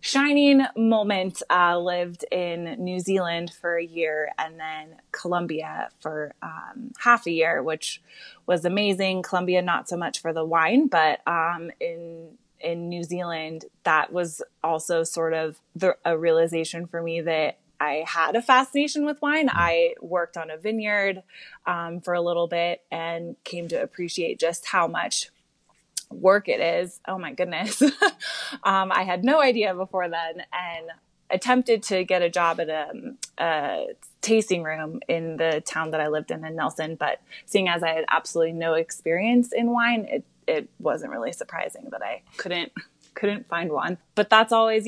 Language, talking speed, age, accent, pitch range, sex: English, 170 wpm, 20-39, American, 165-215 Hz, female